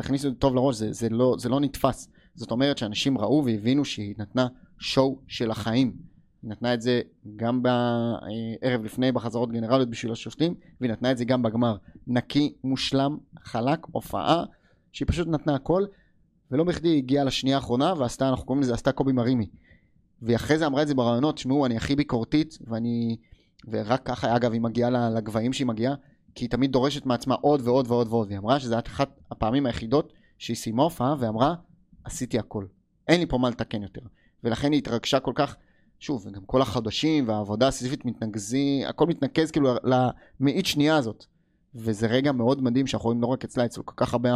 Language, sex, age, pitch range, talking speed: Hebrew, male, 30-49, 115-140 Hz, 185 wpm